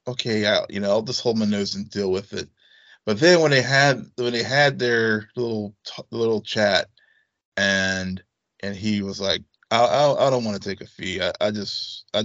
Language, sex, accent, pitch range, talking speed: English, male, American, 105-120 Hz, 210 wpm